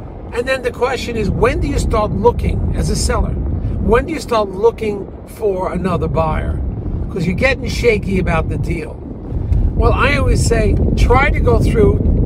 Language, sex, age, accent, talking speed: English, male, 50-69, American, 175 wpm